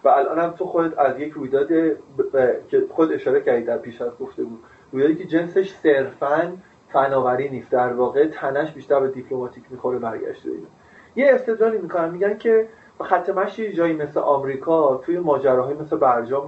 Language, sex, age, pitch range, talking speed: Persian, male, 30-49, 140-200 Hz, 190 wpm